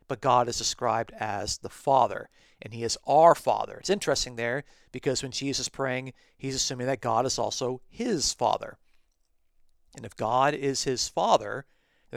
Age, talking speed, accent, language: 50-69, 175 wpm, American, English